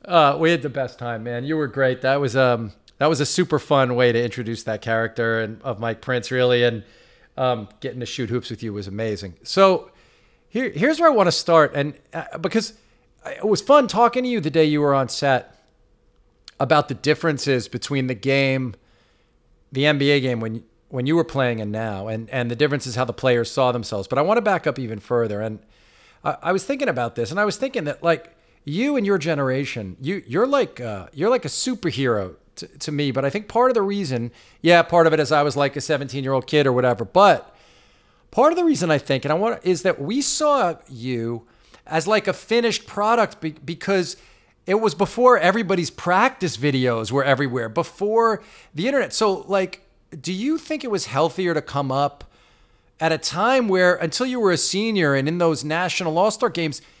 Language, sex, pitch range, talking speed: English, male, 125-185 Hz, 210 wpm